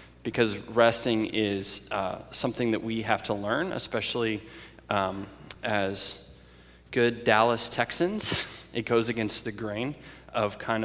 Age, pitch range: 20-39, 100-115 Hz